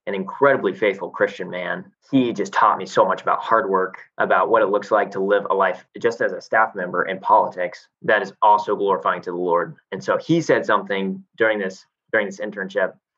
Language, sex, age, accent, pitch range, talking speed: English, male, 20-39, American, 95-130 Hz, 215 wpm